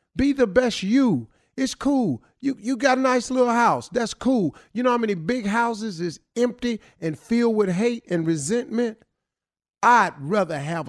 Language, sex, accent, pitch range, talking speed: English, male, American, 140-215 Hz, 175 wpm